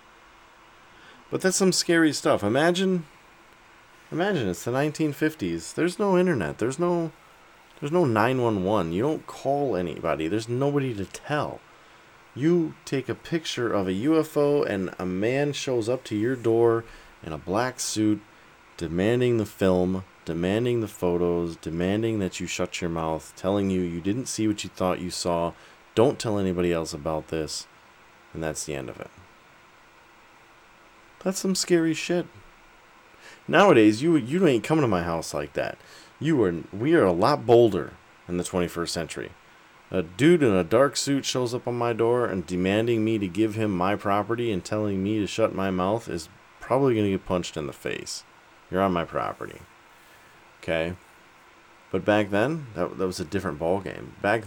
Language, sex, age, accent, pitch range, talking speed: English, male, 30-49, American, 90-135 Hz, 170 wpm